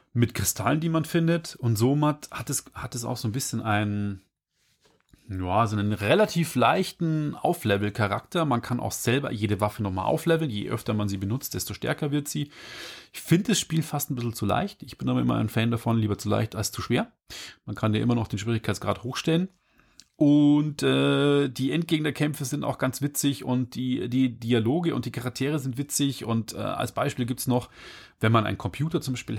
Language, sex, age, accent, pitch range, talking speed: German, male, 30-49, German, 110-145 Hz, 195 wpm